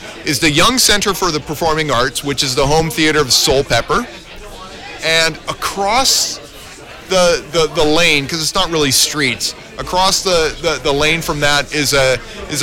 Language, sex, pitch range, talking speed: English, male, 140-165 Hz, 175 wpm